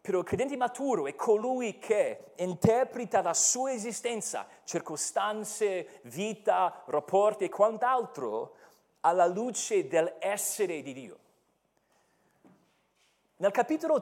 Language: Italian